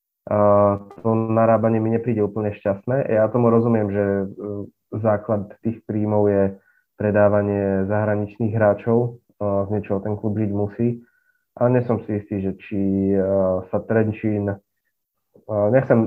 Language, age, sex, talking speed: Slovak, 20-39, male, 120 wpm